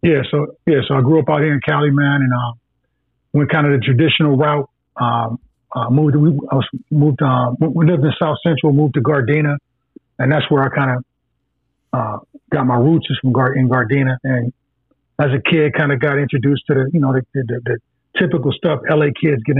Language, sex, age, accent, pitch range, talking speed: English, male, 30-49, American, 130-145 Hz, 220 wpm